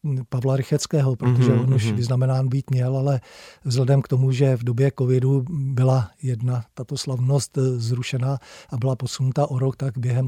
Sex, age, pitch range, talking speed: male, 40-59, 125-135 Hz, 165 wpm